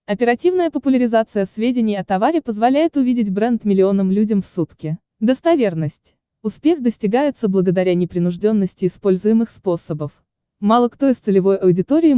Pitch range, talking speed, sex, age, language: 185-255 Hz, 120 wpm, female, 20-39, Russian